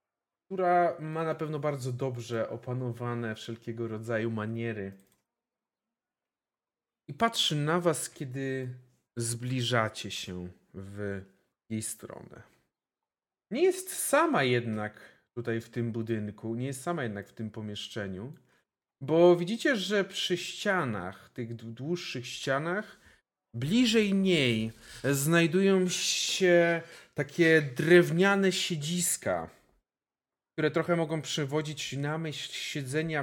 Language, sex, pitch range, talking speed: Polish, male, 120-175 Hz, 105 wpm